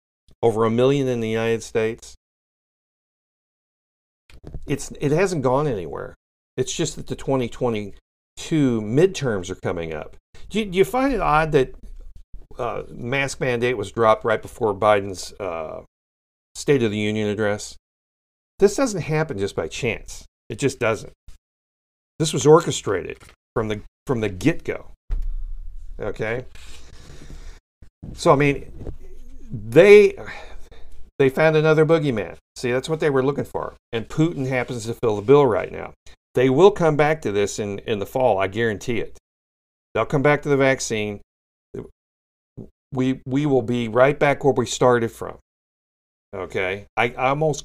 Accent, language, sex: American, English, male